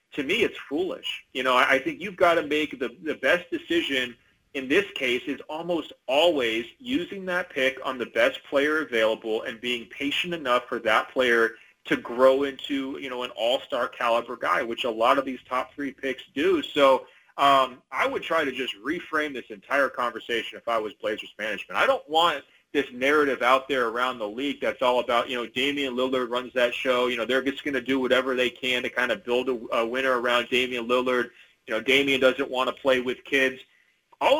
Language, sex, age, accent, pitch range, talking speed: English, male, 30-49, American, 125-150 Hz, 210 wpm